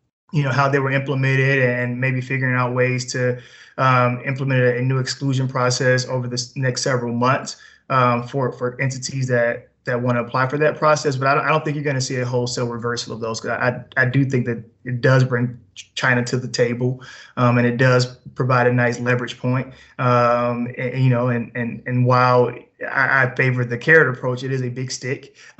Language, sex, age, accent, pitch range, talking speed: English, male, 20-39, American, 125-140 Hz, 215 wpm